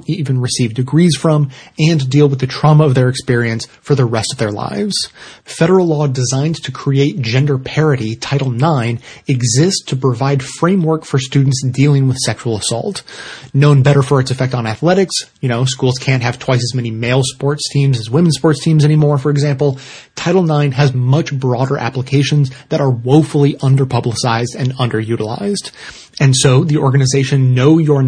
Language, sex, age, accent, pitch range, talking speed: English, male, 30-49, American, 130-150 Hz, 170 wpm